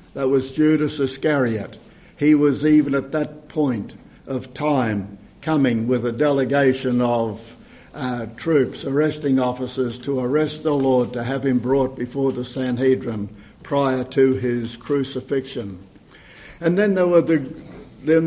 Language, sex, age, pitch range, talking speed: English, male, 60-79, 125-155 Hz, 140 wpm